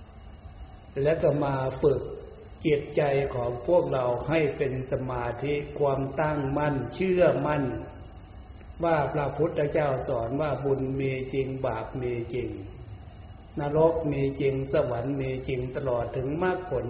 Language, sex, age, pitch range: Thai, male, 60-79, 95-145 Hz